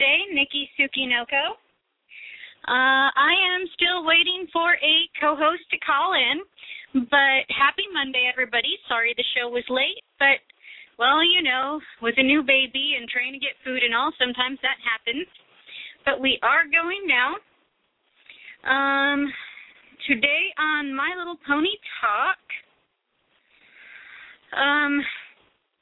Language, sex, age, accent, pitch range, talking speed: English, female, 30-49, American, 245-310 Hz, 125 wpm